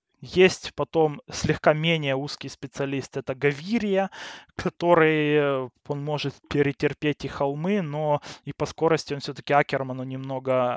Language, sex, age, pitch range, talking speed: Russian, male, 20-39, 135-155 Hz, 125 wpm